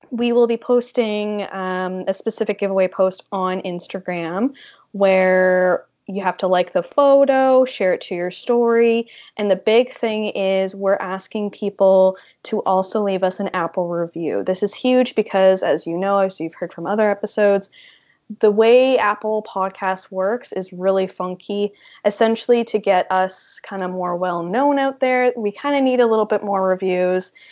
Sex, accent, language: female, American, English